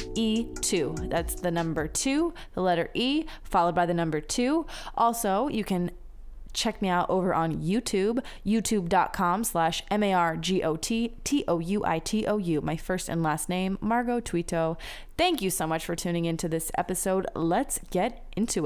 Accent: American